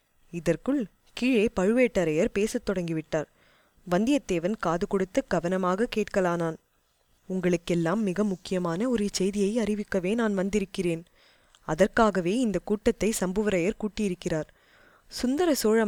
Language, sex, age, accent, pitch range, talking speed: Tamil, female, 20-39, native, 175-220 Hz, 95 wpm